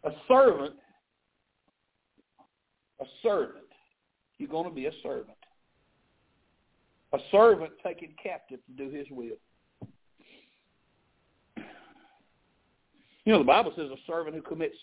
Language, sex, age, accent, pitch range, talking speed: English, male, 60-79, American, 155-260 Hz, 110 wpm